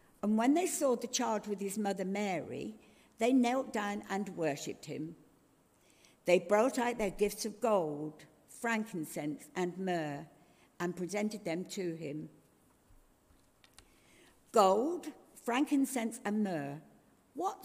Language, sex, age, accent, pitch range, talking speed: English, female, 60-79, British, 175-260 Hz, 120 wpm